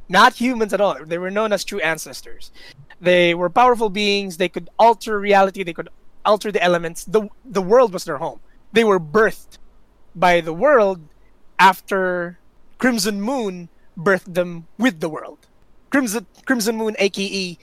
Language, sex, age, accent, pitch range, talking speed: English, male, 20-39, Filipino, 175-220 Hz, 160 wpm